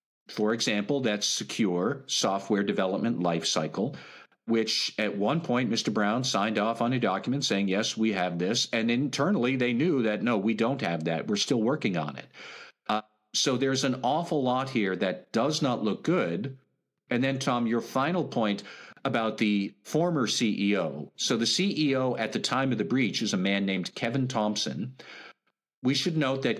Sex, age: male, 50-69